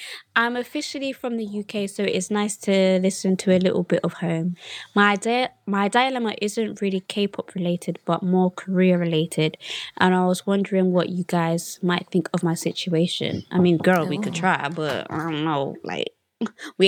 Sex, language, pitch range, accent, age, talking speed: female, English, 175-210 Hz, British, 20-39, 190 wpm